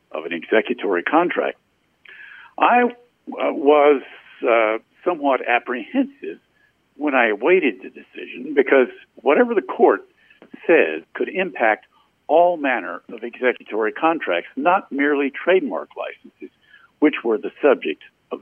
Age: 60-79